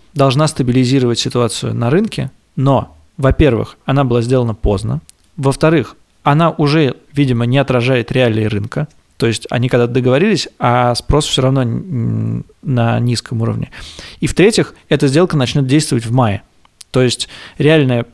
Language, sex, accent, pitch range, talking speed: Russian, male, native, 120-145 Hz, 140 wpm